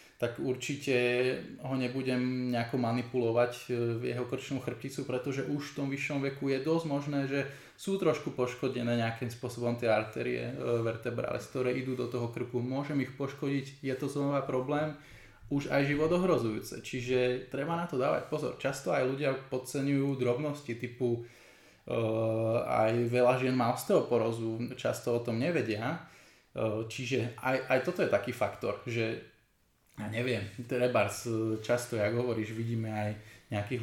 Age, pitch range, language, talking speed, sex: 20-39, 115-140 Hz, Slovak, 145 wpm, male